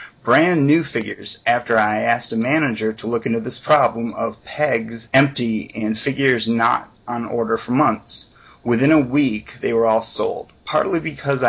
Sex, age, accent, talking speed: male, 30-49, American, 165 wpm